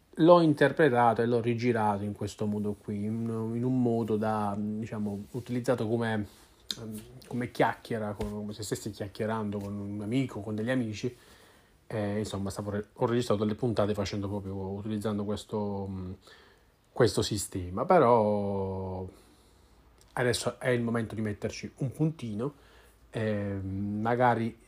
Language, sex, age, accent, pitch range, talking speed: Italian, male, 30-49, native, 95-115 Hz, 120 wpm